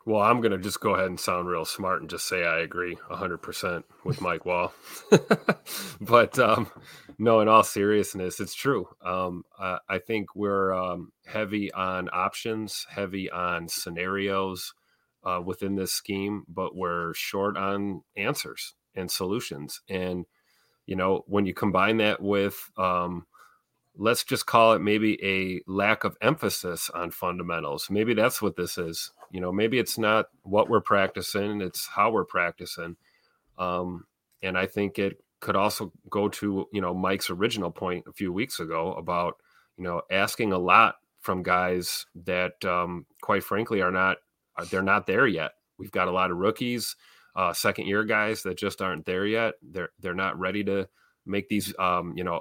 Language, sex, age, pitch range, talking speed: English, male, 30-49, 90-105 Hz, 170 wpm